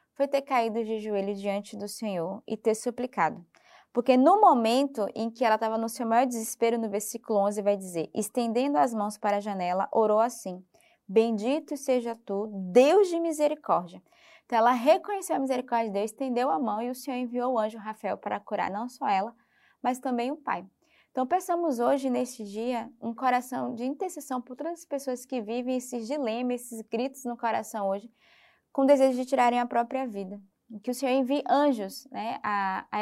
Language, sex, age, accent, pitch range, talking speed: Portuguese, female, 20-39, Brazilian, 215-265 Hz, 190 wpm